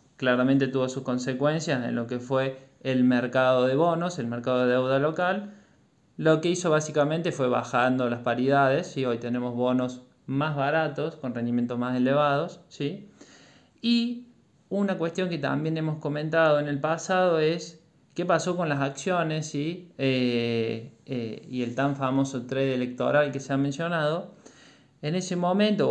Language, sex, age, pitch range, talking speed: Spanish, male, 20-39, 130-170 Hz, 150 wpm